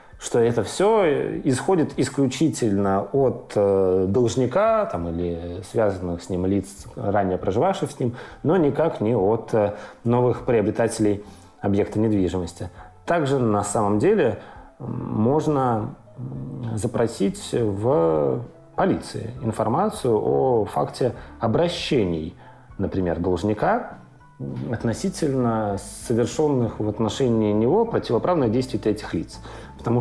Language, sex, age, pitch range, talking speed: Russian, male, 30-49, 100-125 Hz, 95 wpm